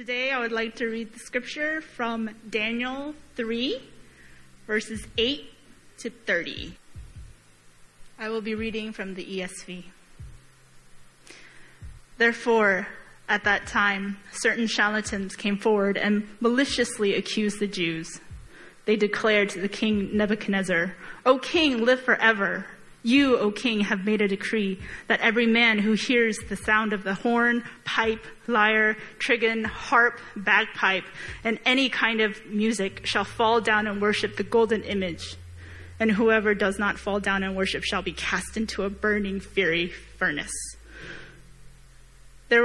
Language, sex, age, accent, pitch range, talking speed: English, female, 20-39, American, 195-230 Hz, 135 wpm